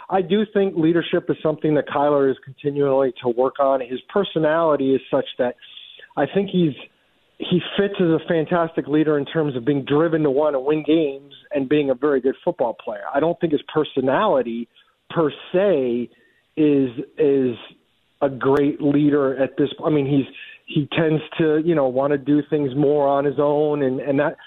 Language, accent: English, American